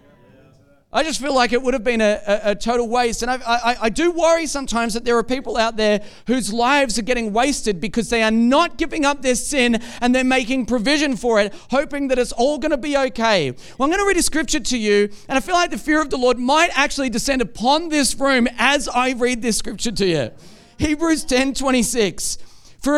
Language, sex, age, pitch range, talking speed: English, male, 40-59, 205-275 Hz, 225 wpm